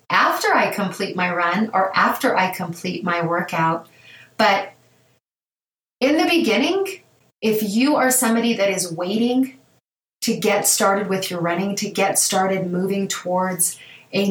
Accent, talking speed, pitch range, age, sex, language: American, 145 wpm, 180-220 Hz, 30-49, female, English